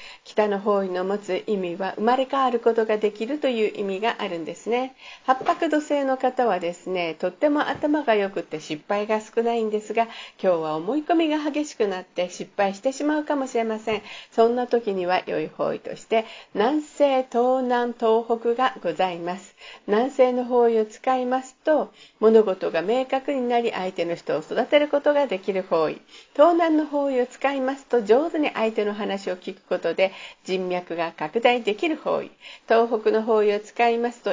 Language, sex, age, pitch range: Japanese, female, 50-69, 195-270 Hz